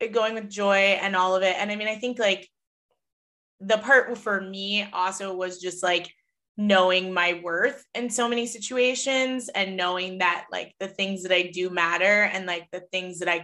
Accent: American